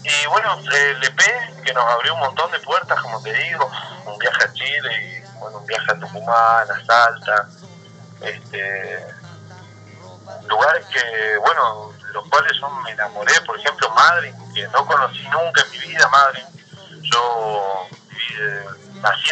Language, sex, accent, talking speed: English, male, Argentinian, 150 wpm